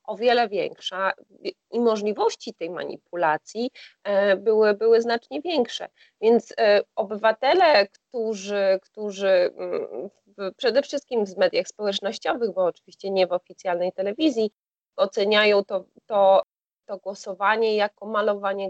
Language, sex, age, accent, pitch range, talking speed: Polish, female, 20-39, native, 185-220 Hz, 115 wpm